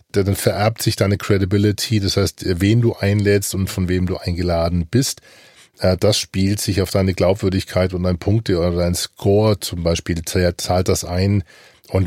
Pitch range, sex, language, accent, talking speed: 95-115 Hz, male, German, German, 170 wpm